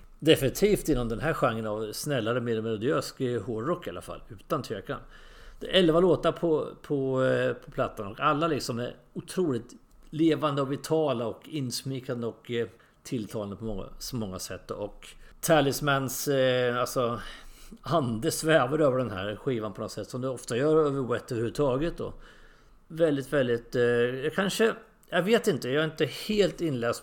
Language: English